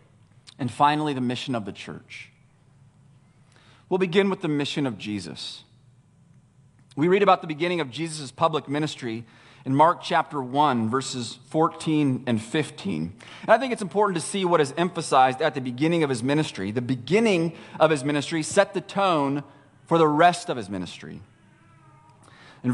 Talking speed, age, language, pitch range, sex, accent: 165 wpm, 40-59, English, 130-170 Hz, male, American